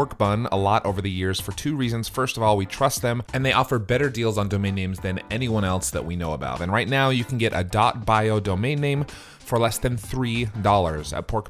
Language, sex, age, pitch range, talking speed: English, male, 30-49, 100-130 Hz, 245 wpm